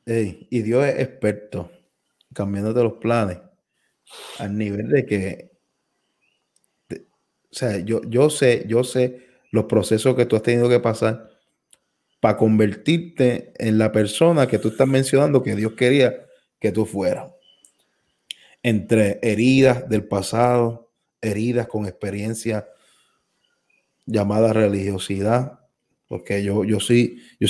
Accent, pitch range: Venezuelan, 105-120 Hz